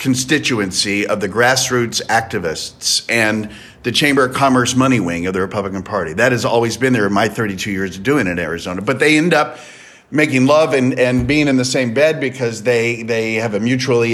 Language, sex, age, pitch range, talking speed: English, male, 50-69, 115-140 Hz, 210 wpm